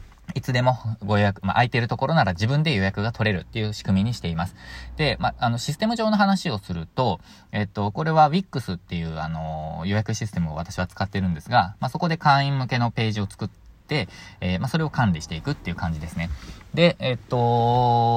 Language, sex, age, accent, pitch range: Japanese, male, 20-39, native, 90-115 Hz